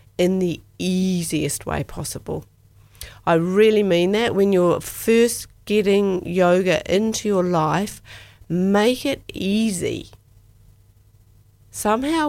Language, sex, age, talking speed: English, female, 50-69, 105 wpm